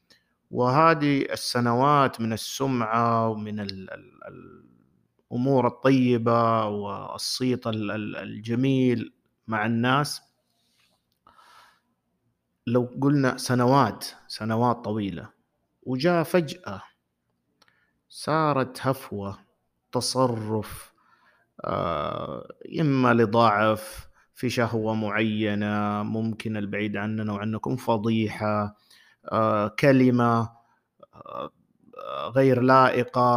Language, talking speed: Arabic, 65 wpm